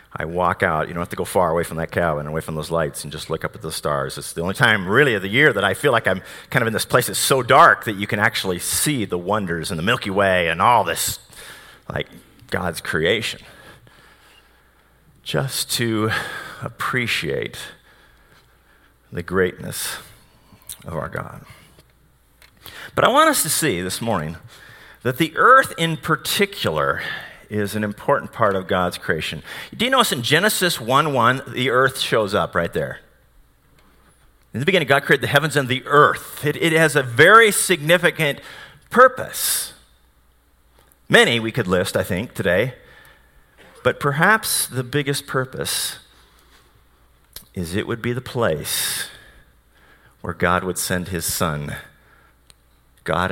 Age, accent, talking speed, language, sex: 40-59, American, 165 wpm, English, male